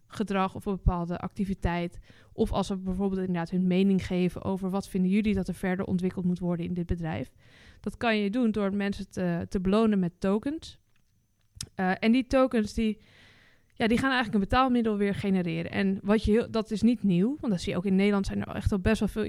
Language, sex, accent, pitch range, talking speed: Dutch, female, Dutch, 180-210 Hz, 225 wpm